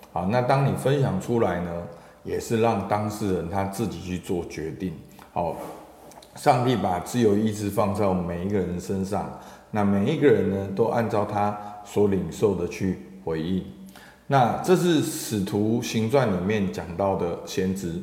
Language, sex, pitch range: Chinese, male, 95-120 Hz